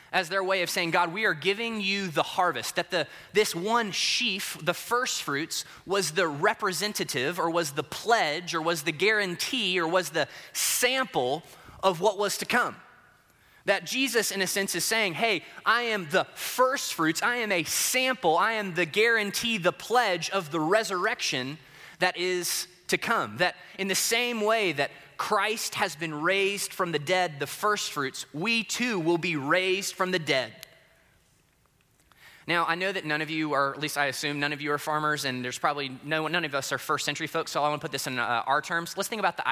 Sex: male